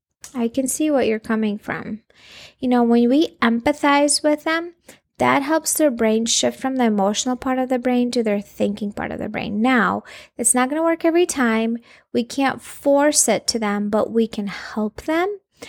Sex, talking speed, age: female, 200 wpm, 20-39